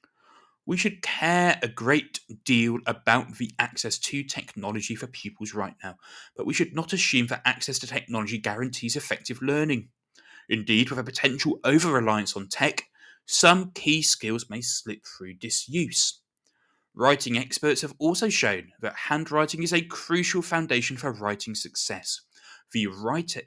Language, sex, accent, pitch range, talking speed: English, male, British, 110-150 Hz, 145 wpm